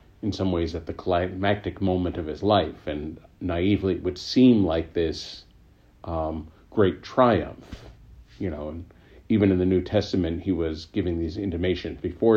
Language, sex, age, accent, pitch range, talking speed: English, male, 50-69, American, 85-100 Hz, 165 wpm